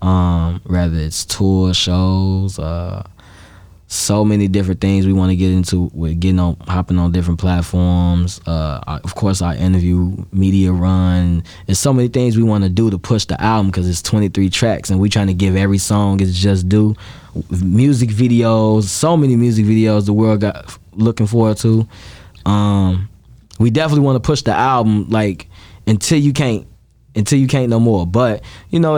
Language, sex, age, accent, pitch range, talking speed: English, male, 20-39, American, 95-110 Hz, 180 wpm